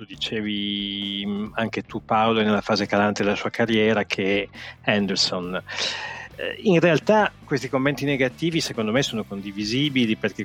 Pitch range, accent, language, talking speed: 105-140 Hz, native, Italian, 125 wpm